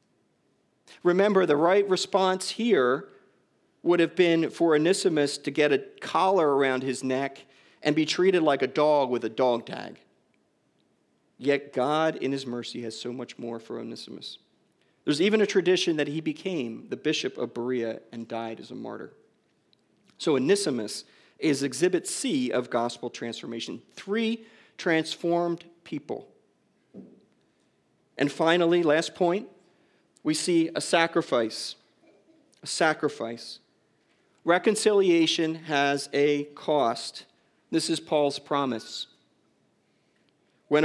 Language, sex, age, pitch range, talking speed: English, male, 40-59, 145-185 Hz, 125 wpm